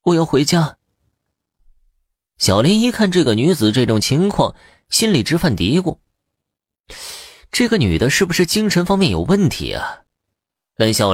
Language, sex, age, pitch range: Chinese, male, 20-39, 95-150 Hz